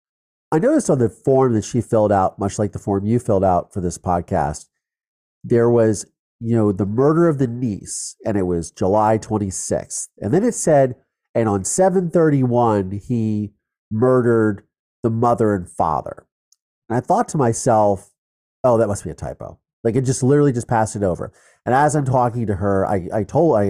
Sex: male